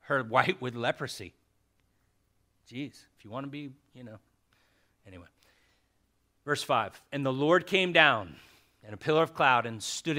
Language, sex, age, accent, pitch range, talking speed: English, male, 40-59, American, 100-135 Hz, 160 wpm